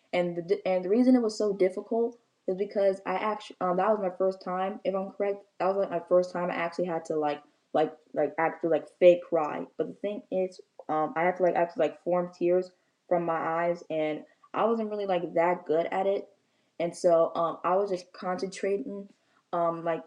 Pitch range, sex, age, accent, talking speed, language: 165-190 Hz, female, 10-29, American, 220 wpm, English